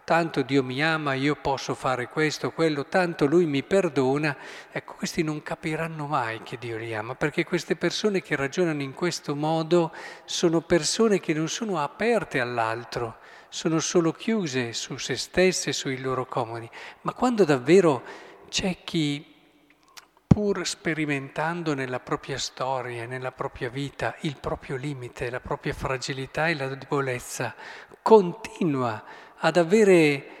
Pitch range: 140-185 Hz